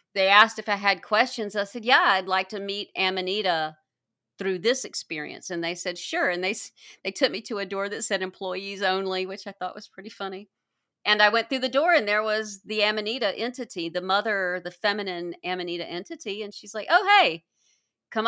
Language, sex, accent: English, female, American